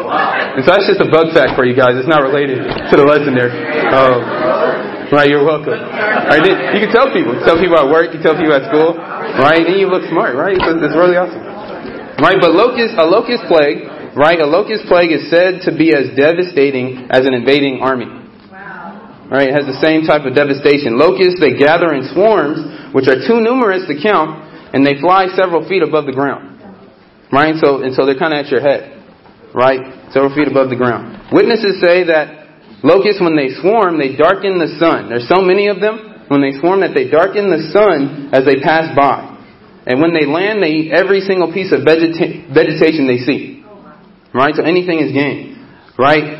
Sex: male